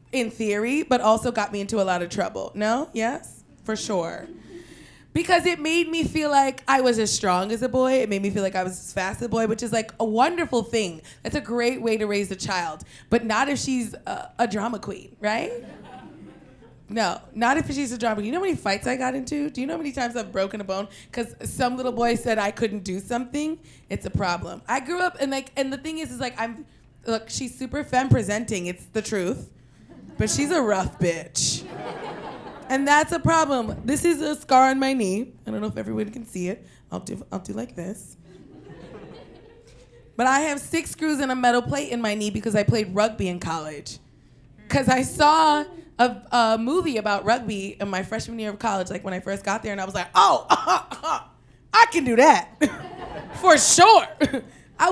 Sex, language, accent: female, English, American